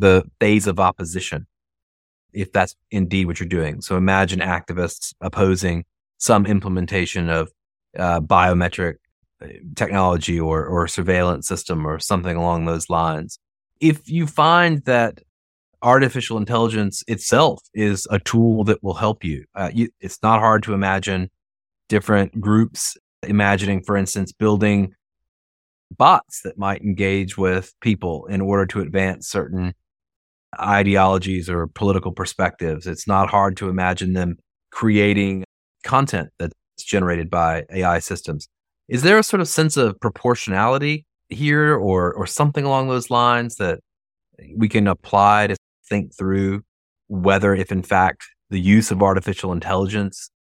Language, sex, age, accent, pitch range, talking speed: English, male, 30-49, American, 90-110 Hz, 135 wpm